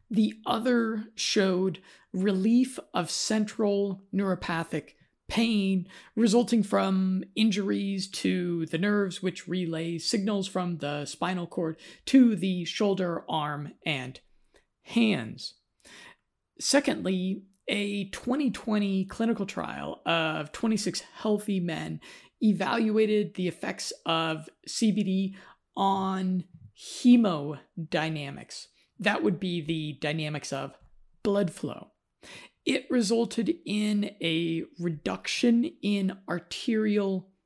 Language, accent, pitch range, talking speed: English, American, 180-220 Hz, 95 wpm